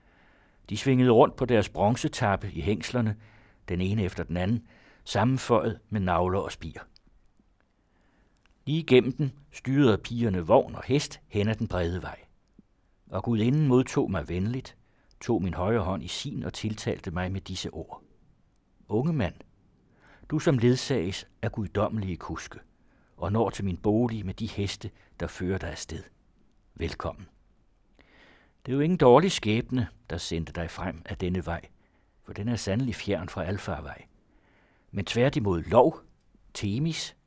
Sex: male